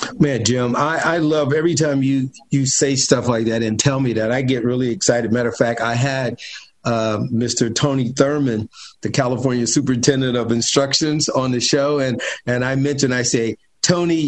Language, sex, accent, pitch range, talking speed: English, male, American, 130-160 Hz, 190 wpm